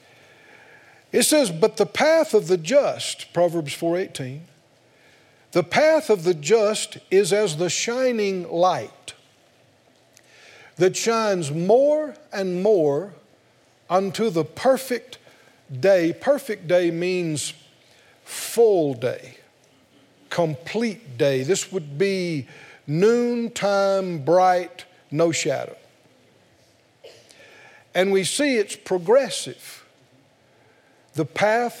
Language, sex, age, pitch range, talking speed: English, male, 50-69, 170-225 Hz, 95 wpm